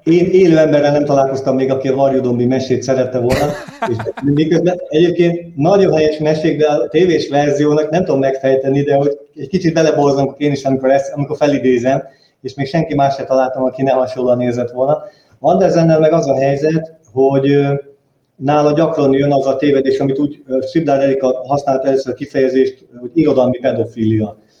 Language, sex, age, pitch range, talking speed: Hungarian, male, 30-49, 130-150 Hz, 170 wpm